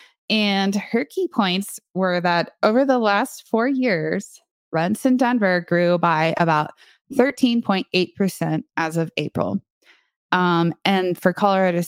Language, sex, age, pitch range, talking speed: English, female, 20-39, 165-200 Hz, 140 wpm